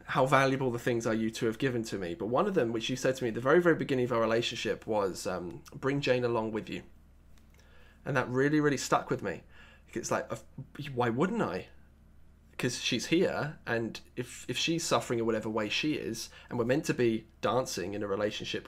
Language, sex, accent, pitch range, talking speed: English, male, British, 110-135 Hz, 220 wpm